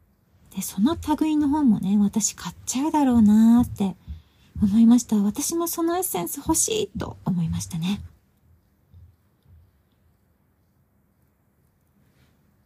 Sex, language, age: female, Japanese, 40-59